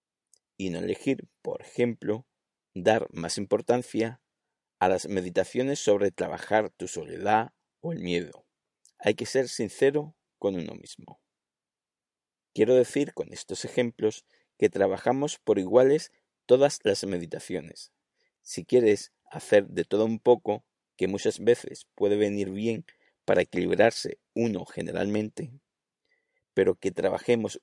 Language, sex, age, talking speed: Spanish, male, 50-69, 125 wpm